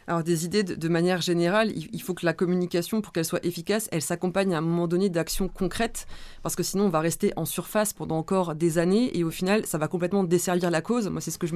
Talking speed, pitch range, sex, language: 255 wpm, 165-200 Hz, female, French